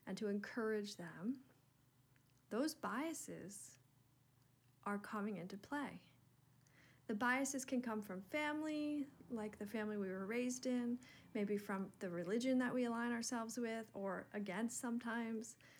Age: 40-59